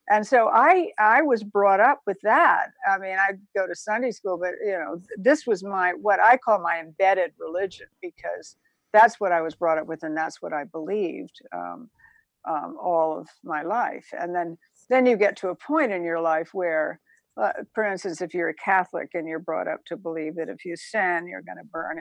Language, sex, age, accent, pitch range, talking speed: English, female, 60-79, American, 165-210 Hz, 220 wpm